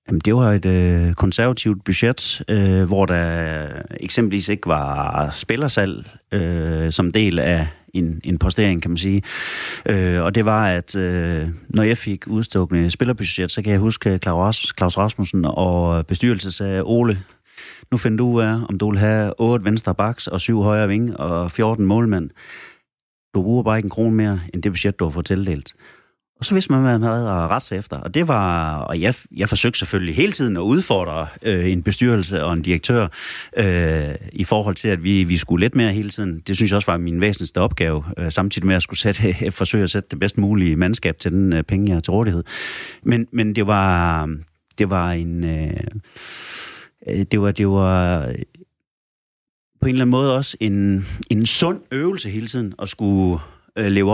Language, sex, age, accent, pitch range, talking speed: Danish, male, 30-49, native, 85-110 Hz, 195 wpm